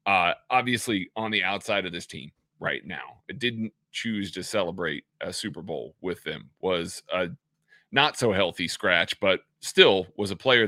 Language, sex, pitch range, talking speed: English, male, 100-125 Hz, 165 wpm